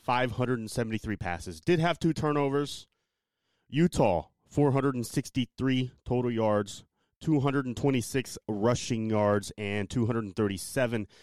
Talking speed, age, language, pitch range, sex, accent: 80 wpm, 30-49, English, 105-135 Hz, male, American